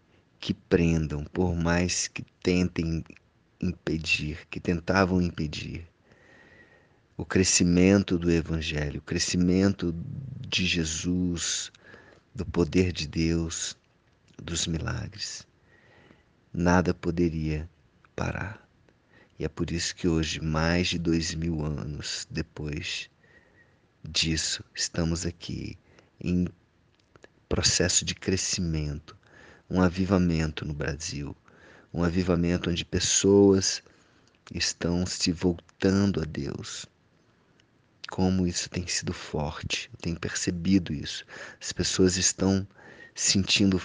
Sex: male